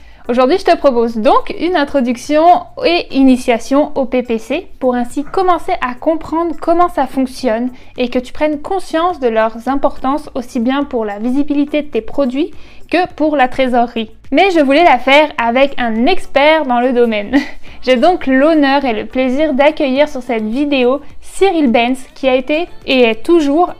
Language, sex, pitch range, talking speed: French, female, 250-320 Hz, 170 wpm